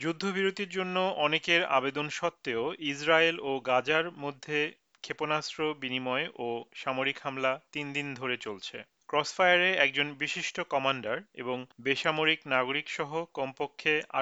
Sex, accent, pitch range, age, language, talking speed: male, native, 120-155 Hz, 40-59, Bengali, 110 wpm